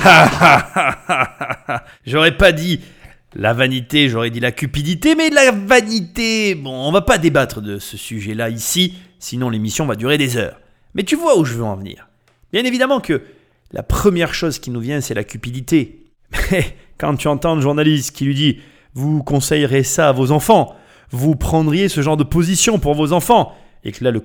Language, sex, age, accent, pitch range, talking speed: French, male, 30-49, French, 120-170 Hz, 190 wpm